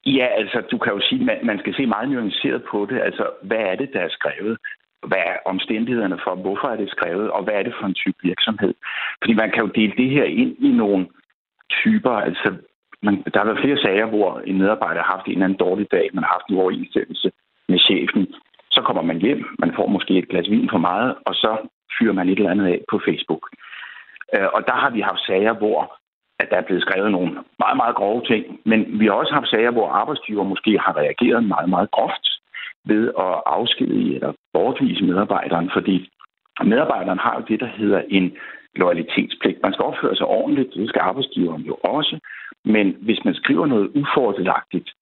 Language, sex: Danish, male